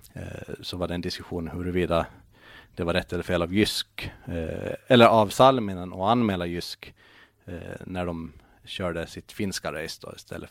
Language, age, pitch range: Swedish, 30-49, 95-125 Hz